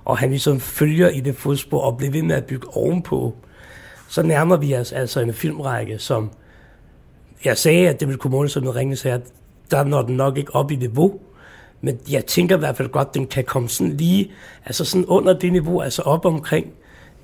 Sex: male